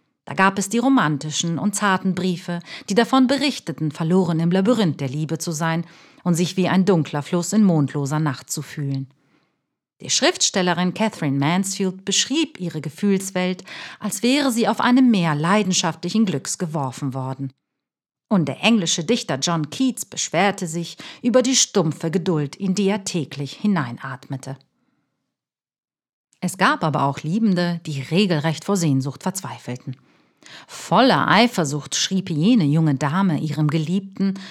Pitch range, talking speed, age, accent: 155-200 Hz, 140 wpm, 50-69, German